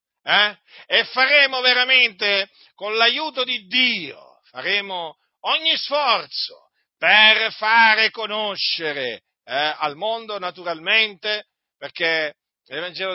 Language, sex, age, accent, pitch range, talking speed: Italian, male, 50-69, native, 165-215 Hz, 90 wpm